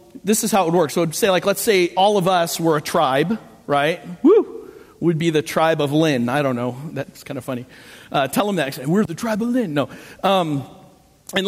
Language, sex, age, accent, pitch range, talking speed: English, male, 40-59, American, 145-200 Hz, 235 wpm